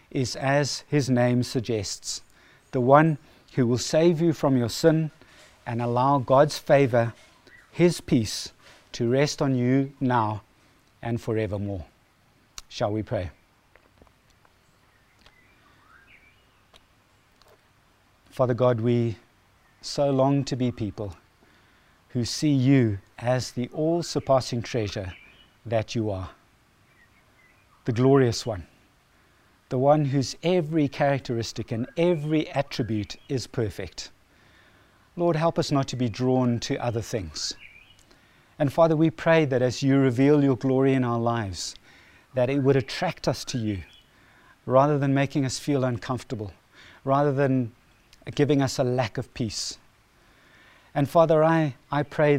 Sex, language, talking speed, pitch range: male, English, 125 wpm, 115-140 Hz